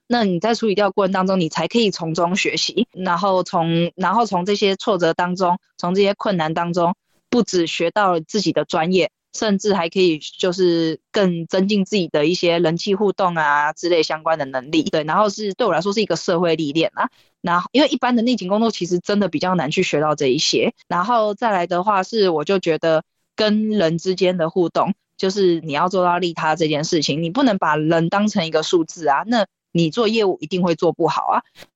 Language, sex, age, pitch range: Chinese, female, 20-39, 165-205 Hz